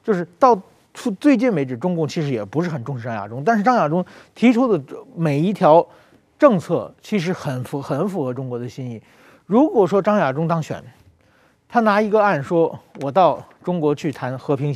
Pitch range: 145-225 Hz